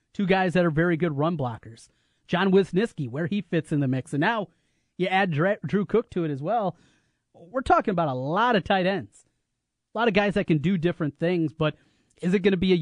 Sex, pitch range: male, 140-180 Hz